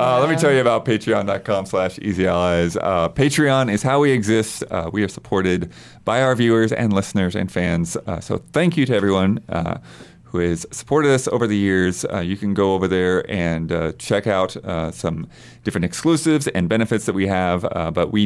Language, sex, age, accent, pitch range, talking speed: English, male, 30-49, American, 90-120 Hz, 205 wpm